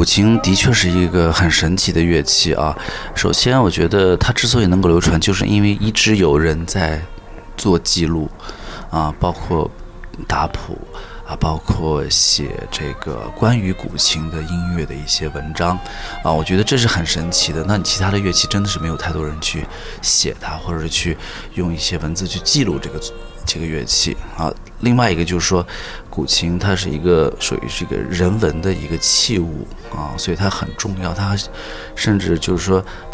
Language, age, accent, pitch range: Chinese, 20-39, native, 80-105 Hz